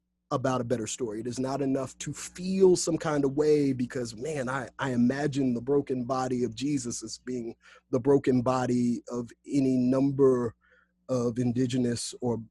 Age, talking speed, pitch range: 30-49, 170 wpm, 120-145 Hz